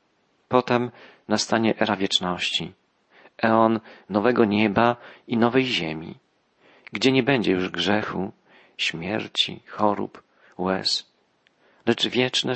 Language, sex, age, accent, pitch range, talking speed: Polish, male, 40-59, native, 100-120 Hz, 95 wpm